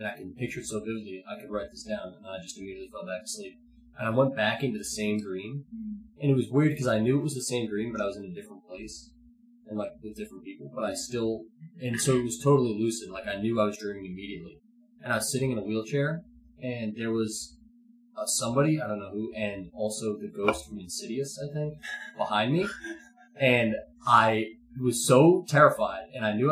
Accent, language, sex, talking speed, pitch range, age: American, English, male, 235 wpm, 105-140 Hz, 20-39